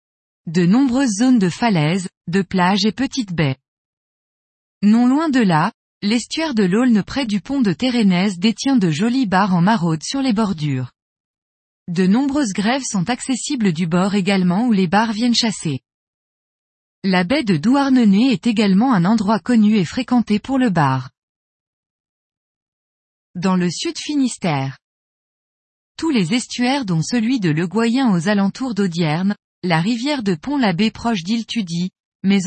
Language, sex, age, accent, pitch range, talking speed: French, female, 20-39, French, 180-245 Hz, 150 wpm